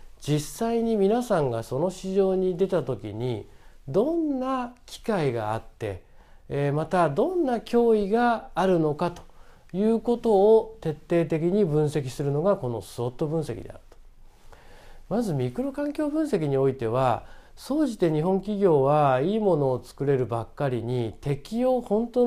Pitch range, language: 130-205 Hz, Japanese